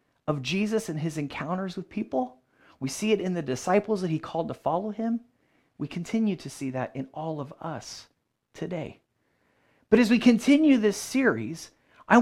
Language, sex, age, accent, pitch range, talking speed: English, male, 30-49, American, 140-205 Hz, 175 wpm